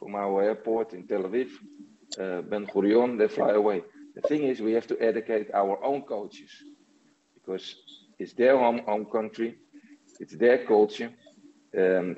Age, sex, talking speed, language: 50-69, male, 160 wpm, Hebrew